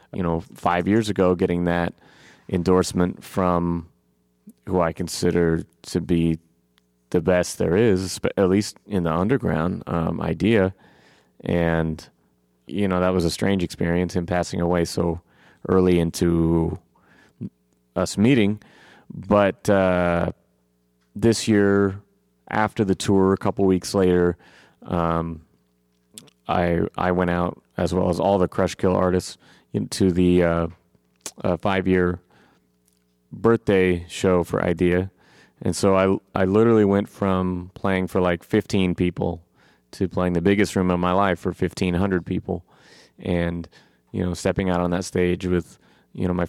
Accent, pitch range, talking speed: American, 85-95 Hz, 140 wpm